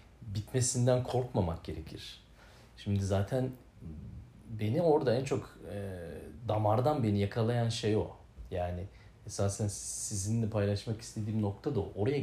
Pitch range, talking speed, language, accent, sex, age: 95-115 Hz, 115 wpm, Turkish, native, male, 40-59